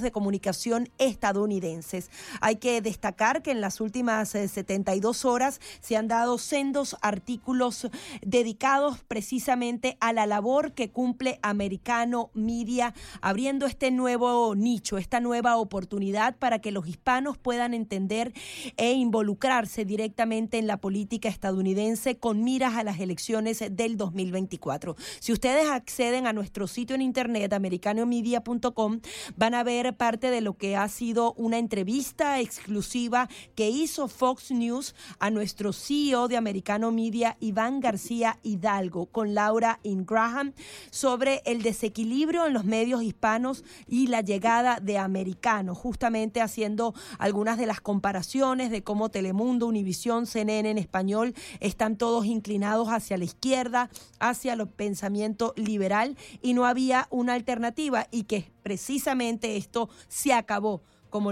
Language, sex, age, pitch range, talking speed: Spanish, female, 30-49, 210-245 Hz, 135 wpm